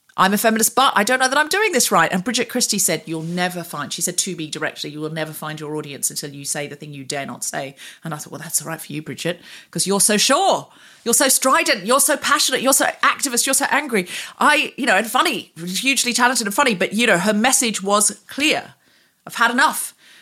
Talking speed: 250 wpm